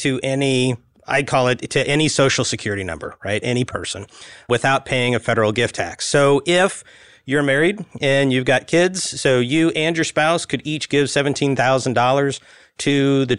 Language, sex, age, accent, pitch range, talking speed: English, male, 30-49, American, 120-145 Hz, 170 wpm